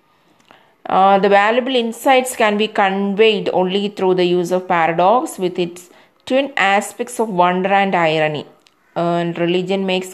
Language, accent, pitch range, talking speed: English, Indian, 180-215 Hz, 150 wpm